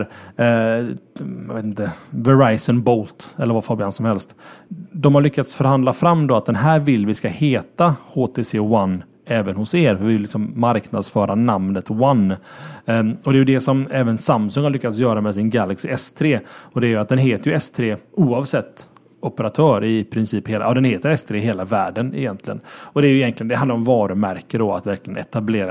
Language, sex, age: Swedish, male, 30-49